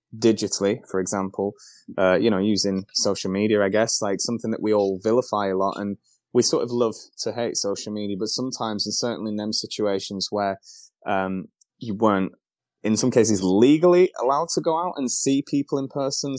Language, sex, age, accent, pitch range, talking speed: English, male, 20-39, British, 100-115 Hz, 185 wpm